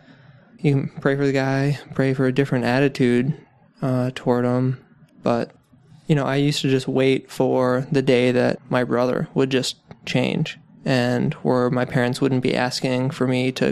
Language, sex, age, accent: English, male, 20-39, American